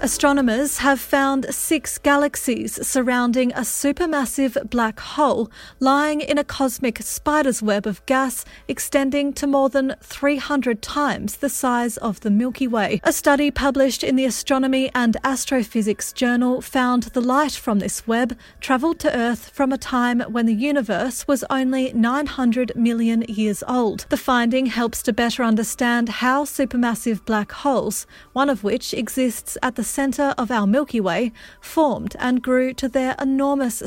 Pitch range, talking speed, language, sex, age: 230-270 Hz, 155 wpm, English, female, 40-59